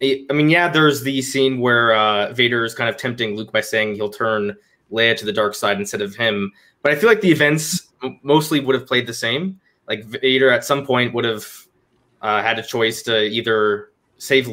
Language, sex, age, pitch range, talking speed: English, male, 20-39, 115-145 Hz, 215 wpm